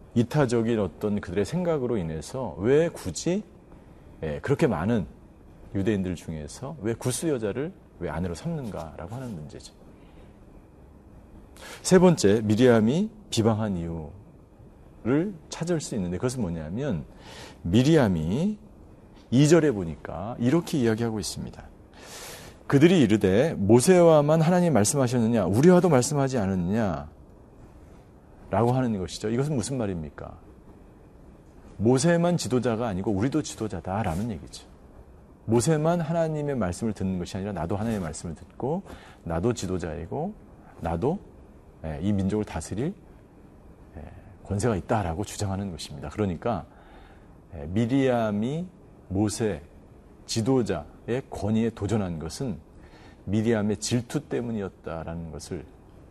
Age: 40-59